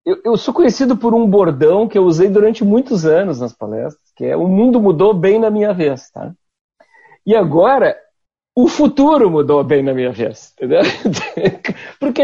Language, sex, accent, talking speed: Portuguese, male, Brazilian, 170 wpm